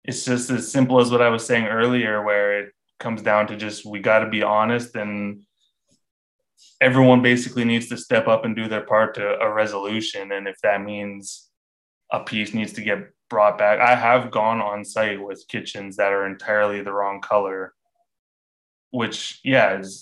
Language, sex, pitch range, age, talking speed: English, male, 100-120 Hz, 20-39, 185 wpm